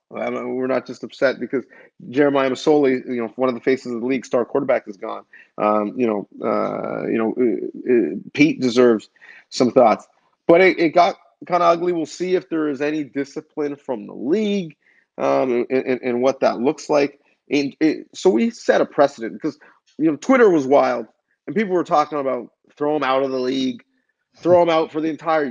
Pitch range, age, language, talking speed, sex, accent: 130-175 Hz, 30-49, English, 200 wpm, male, American